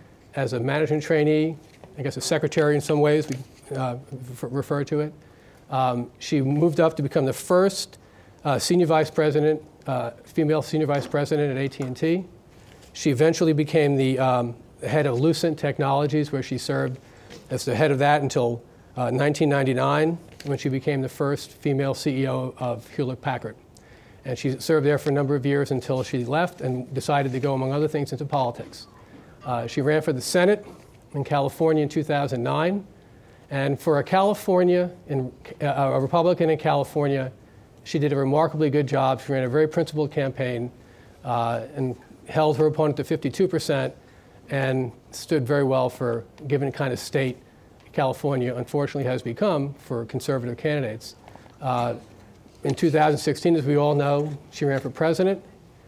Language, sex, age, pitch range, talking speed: English, male, 40-59, 125-155 Hz, 165 wpm